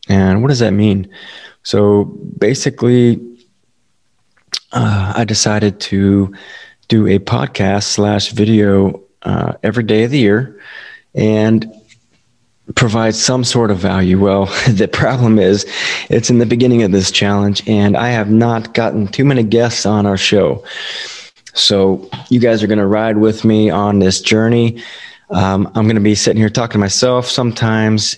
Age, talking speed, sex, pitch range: 20-39, 155 wpm, male, 100-115 Hz